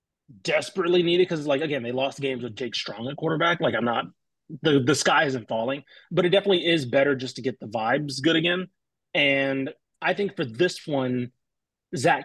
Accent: American